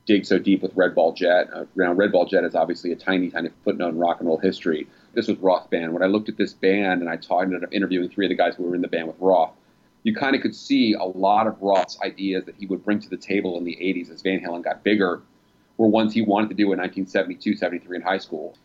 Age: 30-49